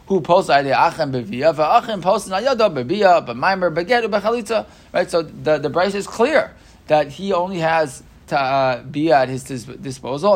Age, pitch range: 20-39, 130-165 Hz